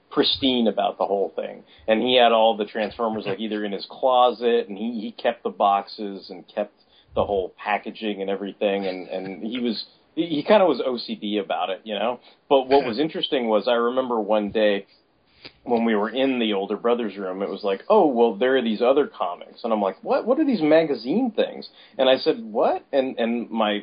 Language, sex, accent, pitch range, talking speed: English, male, American, 105-135 Hz, 215 wpm